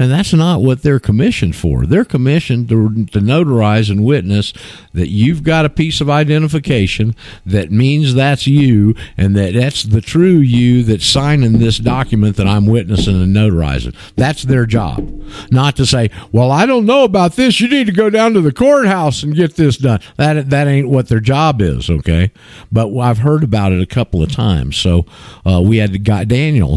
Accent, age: American, 50-69